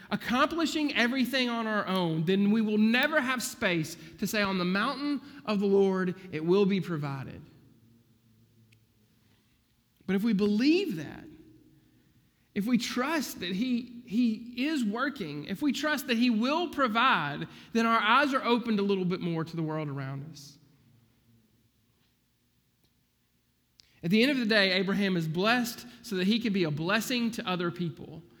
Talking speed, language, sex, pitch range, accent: 160 wpm, English, male, 140-225 Hz, American